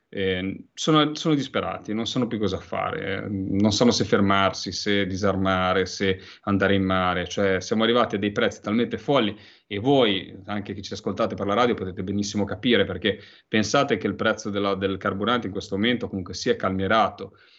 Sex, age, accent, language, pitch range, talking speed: male, 30-49, native, Italian, 95-110 Hz, 180 wpm